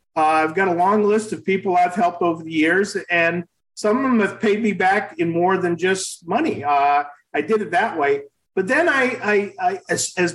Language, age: English, 50-69